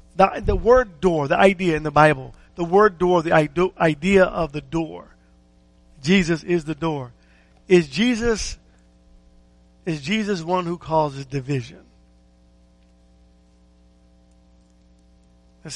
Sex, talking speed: male, 115 wpm